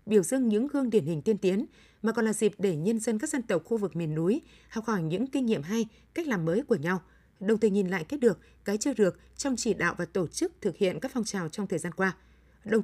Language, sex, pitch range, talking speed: Vietnamese, female, 190-240 Hz, 270 wpm